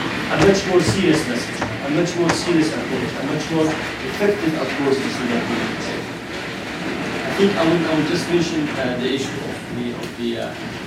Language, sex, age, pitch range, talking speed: English, male, 40-59, 140-190 Hz, 165 wpm